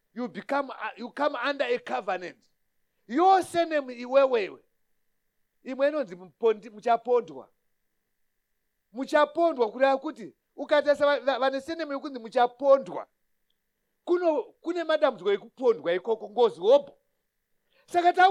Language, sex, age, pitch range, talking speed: English, male, 50-69, 230-315 Hz, 105 wpm